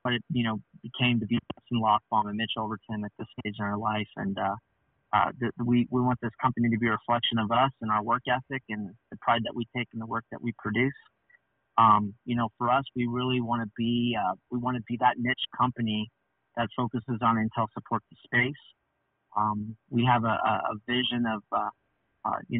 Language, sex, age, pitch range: English, male, 30-49, 110-120 Hz